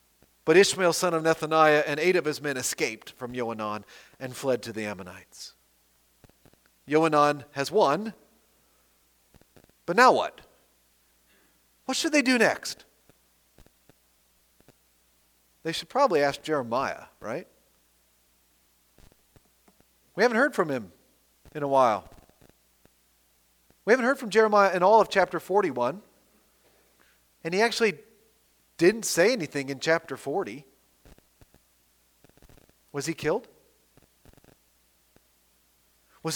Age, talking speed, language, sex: 40-59, 110 wpm, English, male